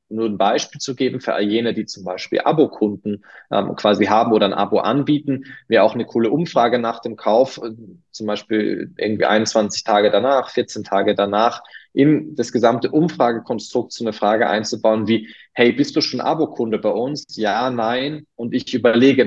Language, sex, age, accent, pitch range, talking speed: German, male, 20-39, German, 110-135 Hz, 180 wpm